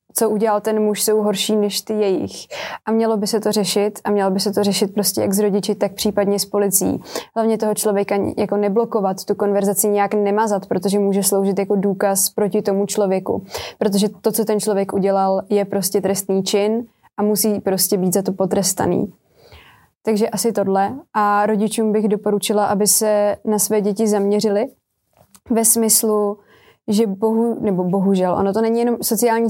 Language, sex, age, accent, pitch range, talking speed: Czech, female, 20-39, native, 200-215 Hz, 175 wpm